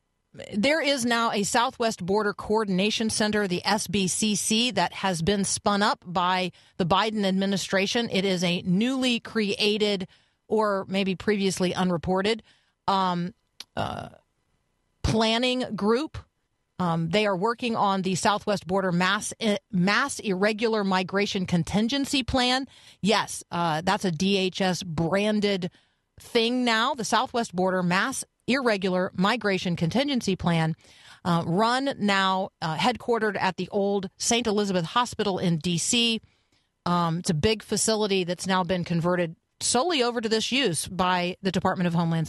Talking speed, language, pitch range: 130 wpm, English, 180-220 Hz